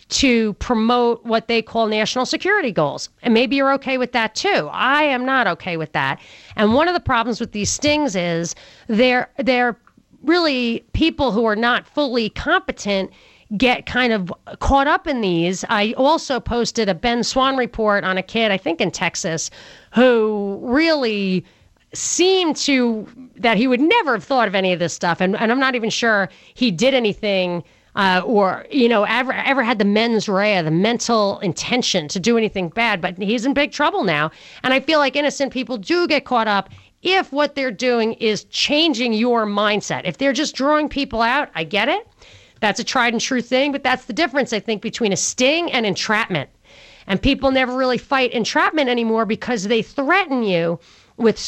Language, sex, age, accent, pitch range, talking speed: English, female, 40-59, American, 210-270 Hz, 190 wpm